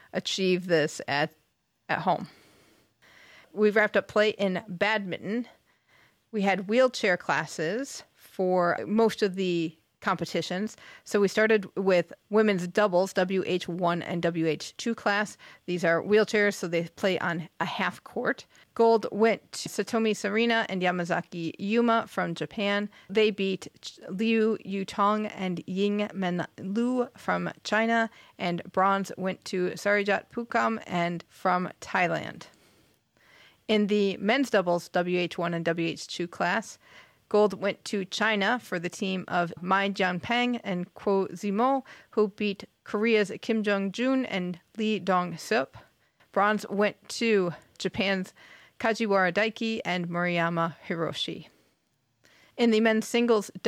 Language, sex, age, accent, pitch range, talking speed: English, female, 40-59, American, 180-215 Hz, 125 wpm